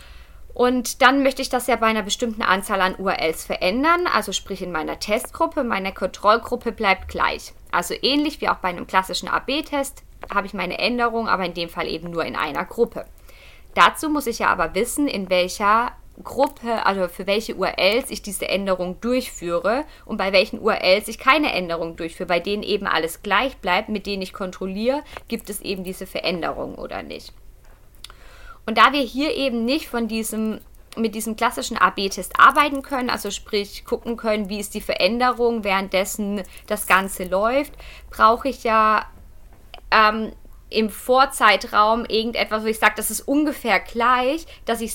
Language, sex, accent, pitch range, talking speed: German, female, German, 190-240 Hz, 170 wpm